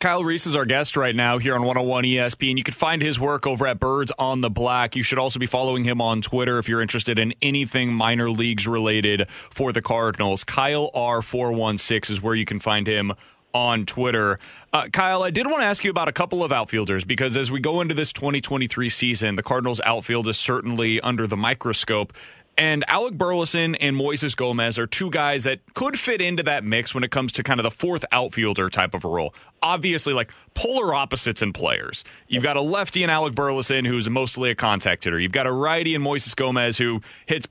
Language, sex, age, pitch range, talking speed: English, male, 30-49, 115-150 Hz, 220 wpm